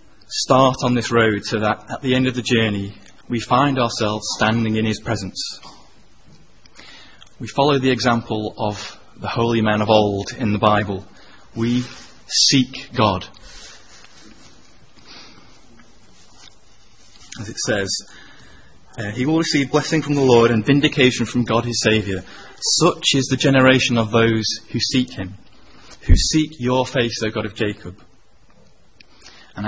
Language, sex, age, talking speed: English, male, 30-49, 140 wpm